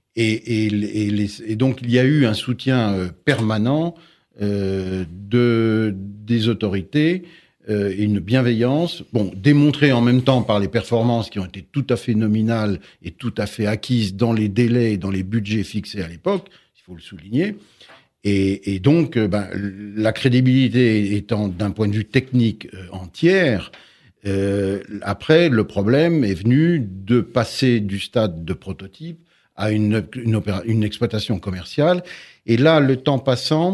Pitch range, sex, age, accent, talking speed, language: 100-130 Hz, male, 60-79, French, 165 wpm, French